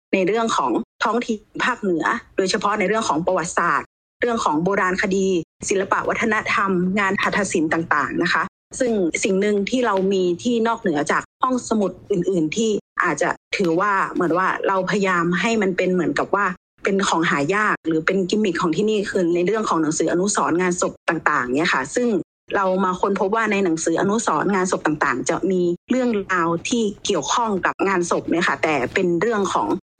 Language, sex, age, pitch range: Thai, female, 30-49, 175-210 Hz